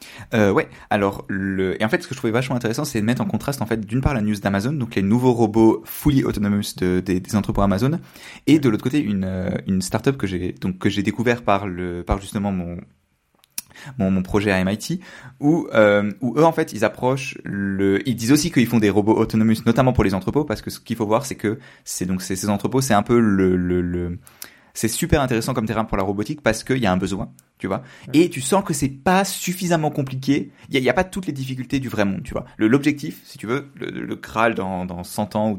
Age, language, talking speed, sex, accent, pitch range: 20-39, French, 250 wpm, male, French, 100-130 Hz